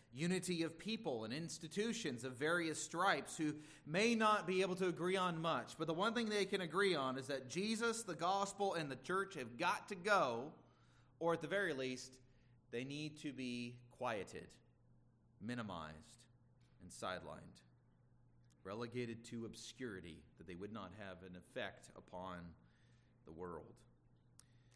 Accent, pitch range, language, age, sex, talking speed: American, 120-155 Hz, English, 30-49, male, 155 wpm